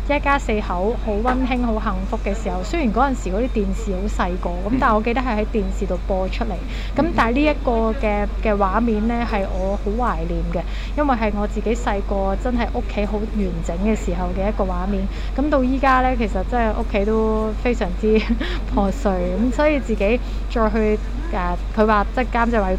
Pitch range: 195-250 Hz